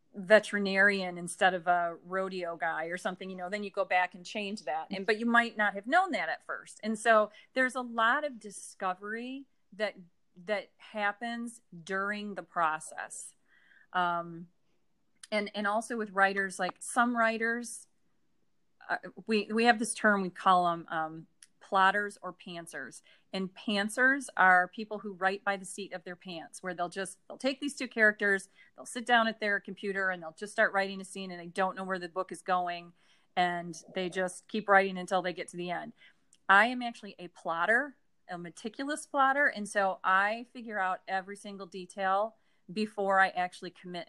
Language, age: English, 30-49